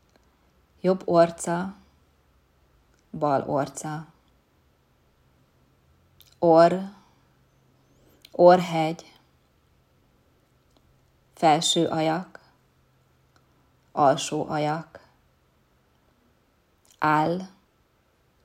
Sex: female